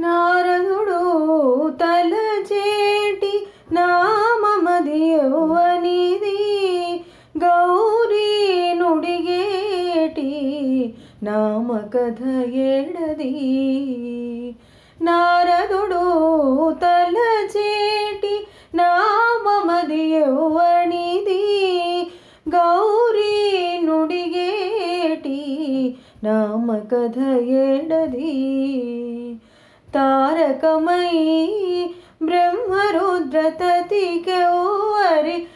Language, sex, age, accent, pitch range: Telugu, female, 20-39, native, 270-395 Hz